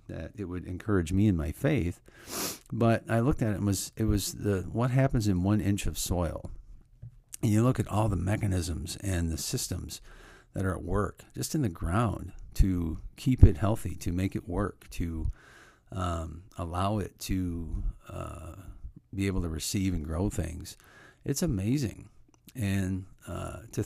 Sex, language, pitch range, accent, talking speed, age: male, English, 85-105 Hz, American, 175 wpm, 50-69